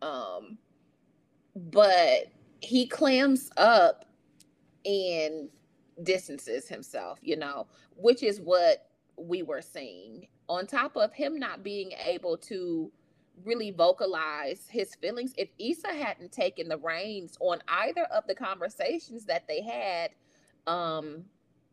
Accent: American